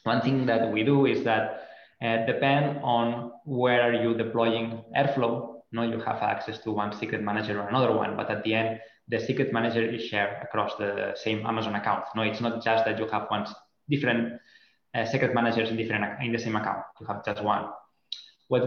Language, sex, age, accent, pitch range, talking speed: English, male, 20-39, Spanish, 110-120 Hz, 210 wpm